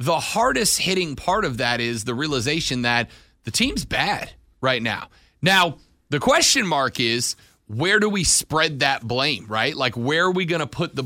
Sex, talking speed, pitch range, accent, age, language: male, 185 wpm, 135-195 Hz, American, 30-49, English